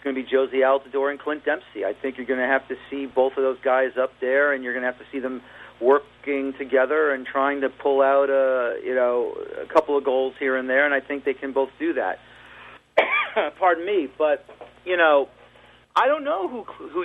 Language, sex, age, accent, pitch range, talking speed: English, male, 40-59, American, 130-155 Hz, 225 wpm